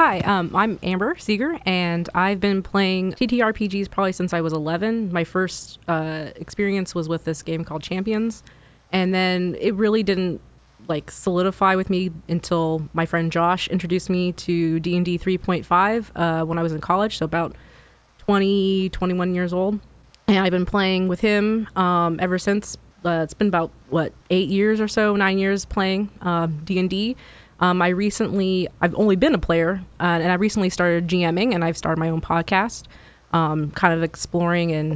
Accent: American